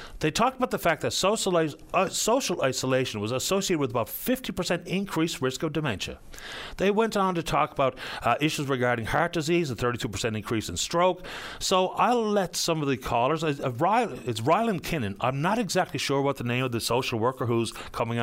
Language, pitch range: English, 125-180 Hz